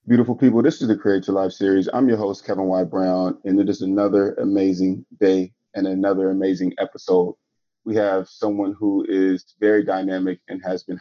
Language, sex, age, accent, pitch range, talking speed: English, male, 30-49, American, 95-110 Hz, 185 wpm